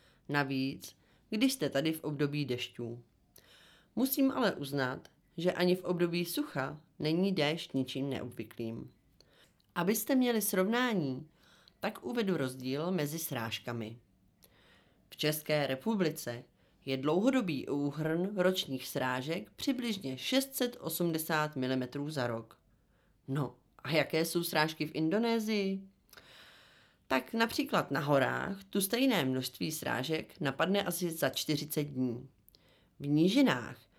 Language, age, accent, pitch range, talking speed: Czech, 30-49, native, 130-190 Hz, 110 wpm